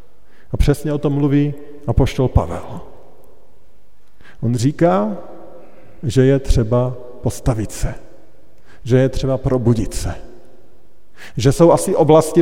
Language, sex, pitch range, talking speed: Slovak, male, 125-160 Hz, 105 wpm